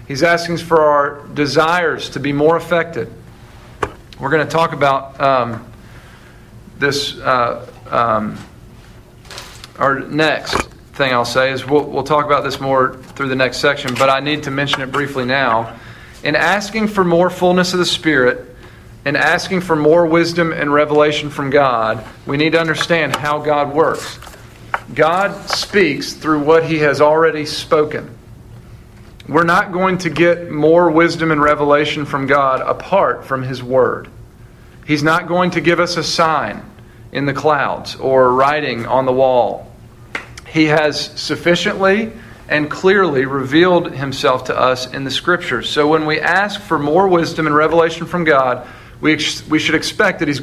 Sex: male